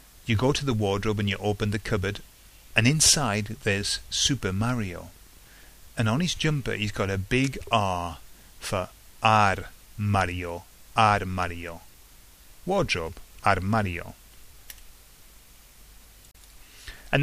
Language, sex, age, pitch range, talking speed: English, male, 30-49, 90-110 Hz, 115 wpm